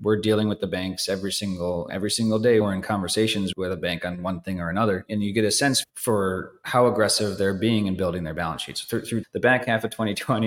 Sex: male